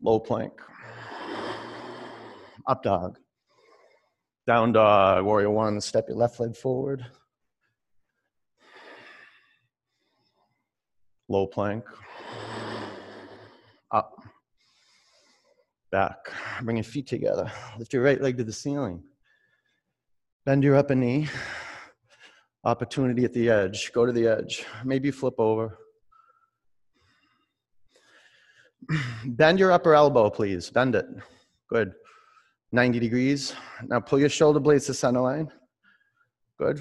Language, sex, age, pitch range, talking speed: English, male, 30-49, 115-150 Hz, 100 wpm